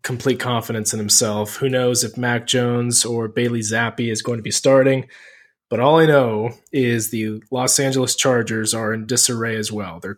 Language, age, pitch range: English, 20-39, 115-130 Hz